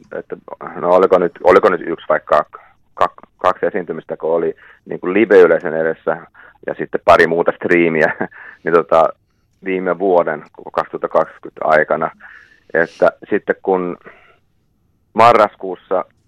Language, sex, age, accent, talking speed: Finnish, male, 30-49, native, 125 wpm